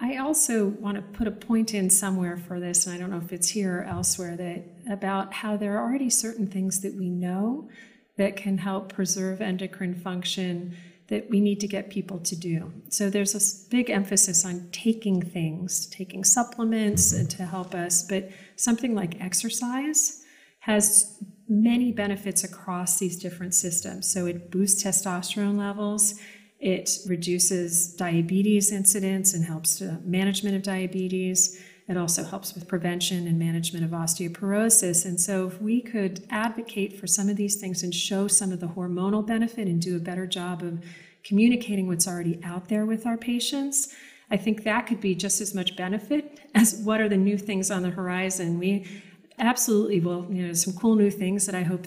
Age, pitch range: 40-59, 180-210 Hz